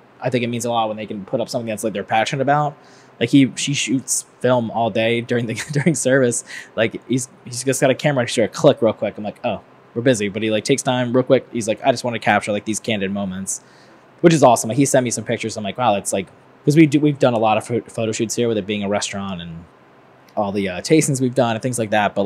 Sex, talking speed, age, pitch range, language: male, 290 wpm, 20-39, 105-130 Hz, English